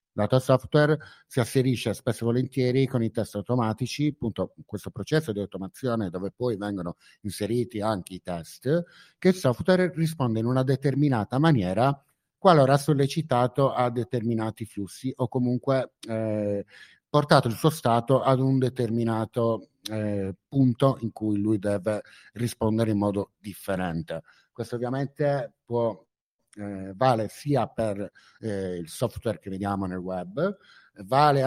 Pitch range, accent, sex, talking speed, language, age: 105-140 Hz, native, male, 135 wpm, Italian, 50-69